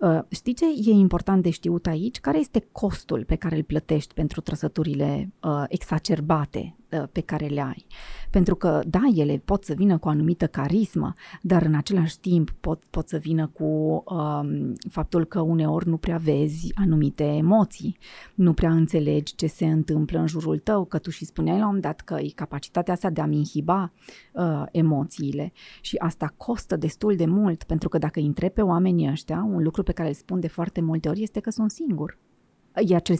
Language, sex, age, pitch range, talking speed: Romanian, female, 30-49, 155-205 Hz, 190 wpm